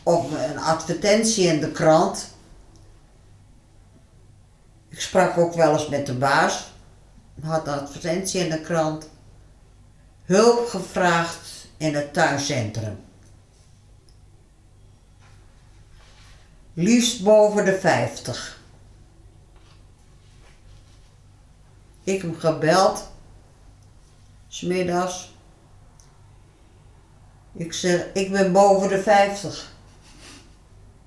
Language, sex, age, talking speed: Dutch, female, 50-69, 80 wpm